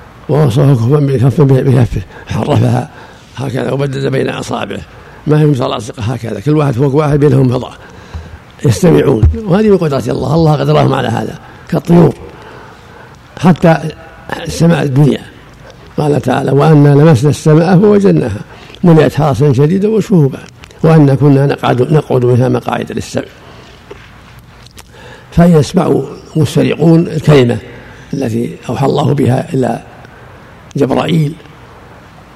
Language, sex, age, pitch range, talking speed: Arabic, male, 60-79, 125-155 Hz, 105 wpm